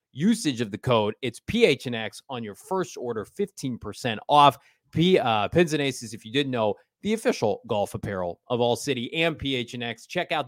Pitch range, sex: 115-150 Hz, male